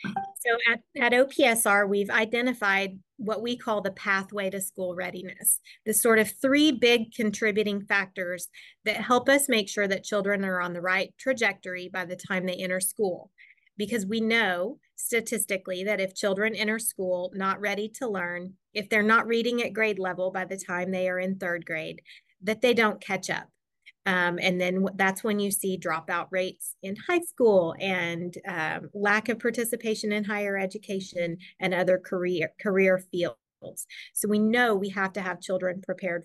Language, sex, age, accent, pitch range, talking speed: English, female, 30-49, American, 185-220 Hz, 175 wpm